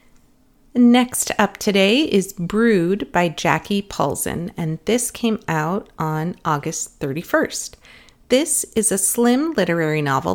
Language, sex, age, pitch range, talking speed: English, female, 30-49, 160-215 Hz, 120 wpm